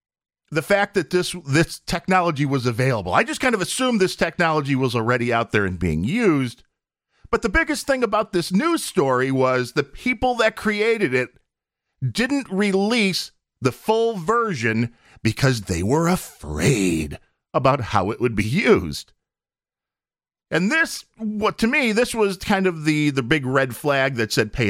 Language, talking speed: English, 165 wpm